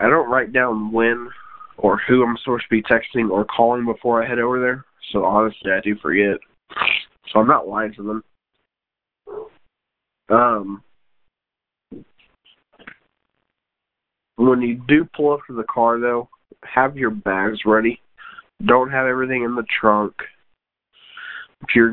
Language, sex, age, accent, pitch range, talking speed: English, male, 20-39, American, 110-120 Hz, 140 wpm